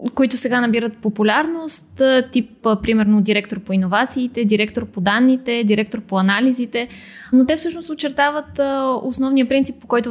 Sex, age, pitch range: female, 20-39, 210-260 Hz